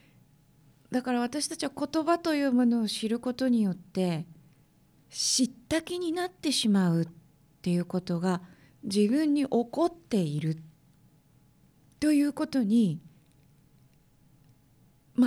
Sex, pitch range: female, 175-275 Hz